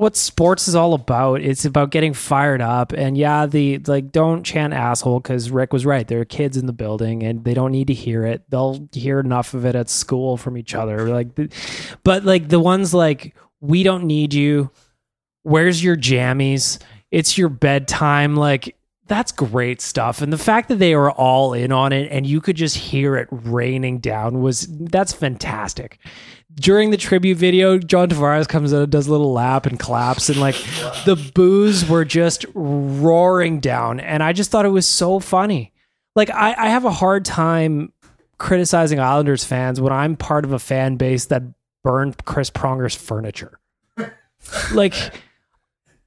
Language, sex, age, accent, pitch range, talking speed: English, male, 20-39, American, 130-170 Hz, 180 wpm